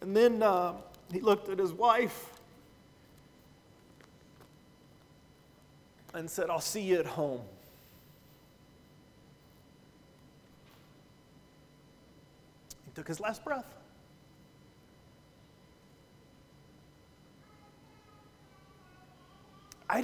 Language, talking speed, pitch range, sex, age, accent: English, 65 wpm, 175-235 Hz, male, 40-59, American